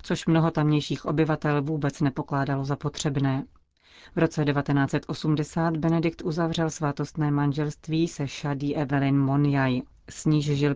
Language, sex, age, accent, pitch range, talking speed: Czech, female, 30-49, native, 140-155 Hz, 115 wpm